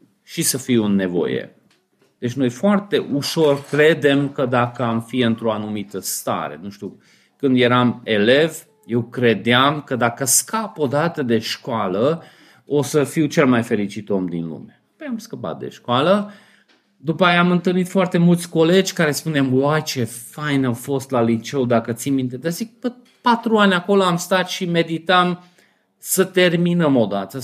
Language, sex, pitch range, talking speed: Romanian, male, 125-180 Hz, 165 wpm